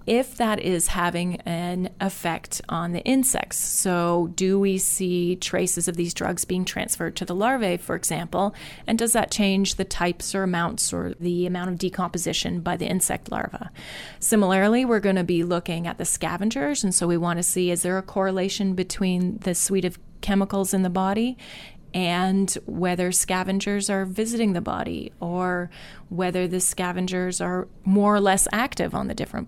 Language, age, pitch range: English, 30-49, 180-200 Hz